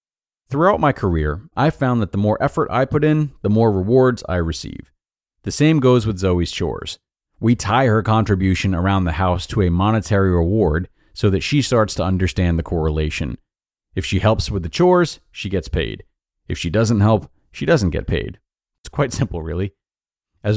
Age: 40-59